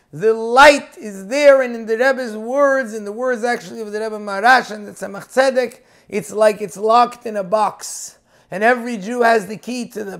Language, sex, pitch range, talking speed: English, male, 210-265 Hz, 210 wpm